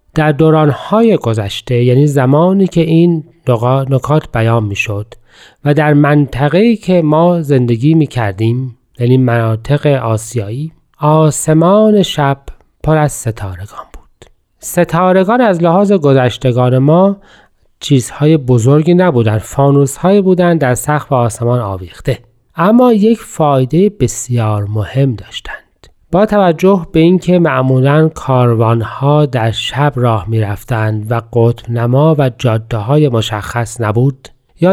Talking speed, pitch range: 110 wpm, 120-160 Hz